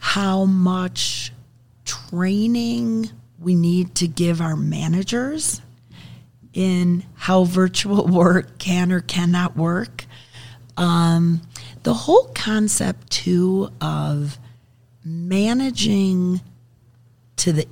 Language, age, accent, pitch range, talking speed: English, 40-59, American, 125-190 Hz, 90 wpm